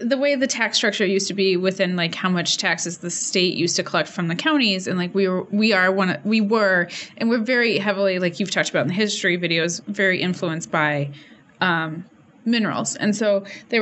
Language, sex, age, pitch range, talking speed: English, female, 20-39, 175-215 Hz, 215 wpm